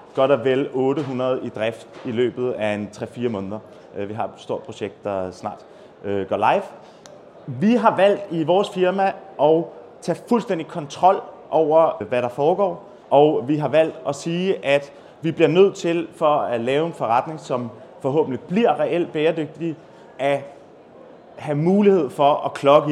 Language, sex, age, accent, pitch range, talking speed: Danish, male, 30-49, native, 130-180 Hz, 160 wpm